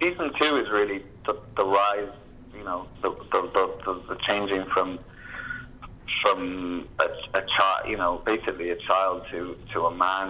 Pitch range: 95-115 Hz